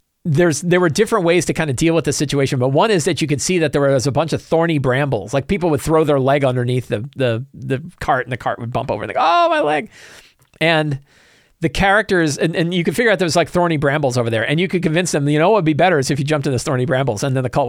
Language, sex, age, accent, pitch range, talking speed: English, male, 40-59, American, 125-165 Hz, 295 wpm